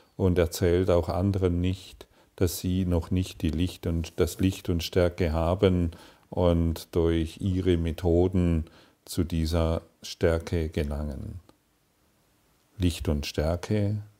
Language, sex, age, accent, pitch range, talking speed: German, male, 50-69, German, 80-95 Hz, 105 wpm